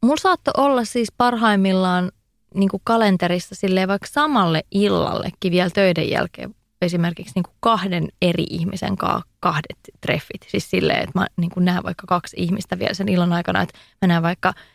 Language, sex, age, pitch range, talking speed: Finnish, female, 20-39, 170-205 Hz, 145 wpm